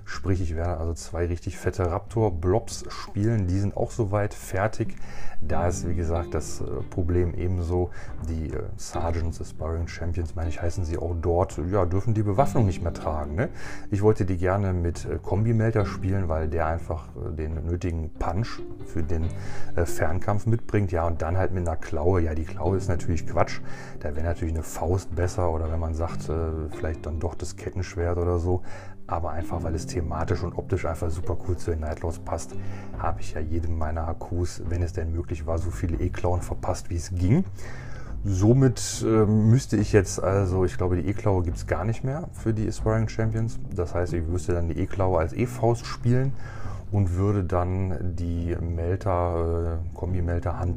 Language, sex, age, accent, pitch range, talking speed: German, male, 30-49, German, 85-100 Hz, 190 wpm